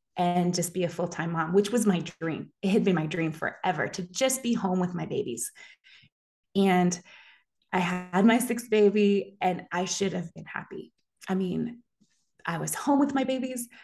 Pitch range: 180-225 Hz